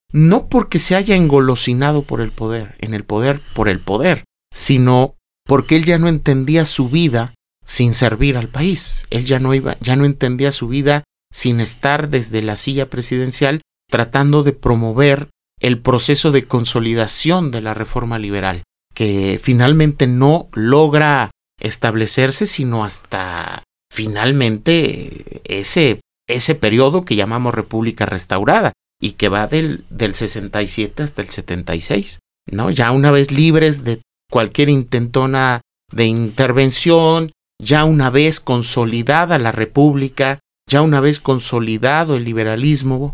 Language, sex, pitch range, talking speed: Spanish, male, 110-150 Hz, 135 wpm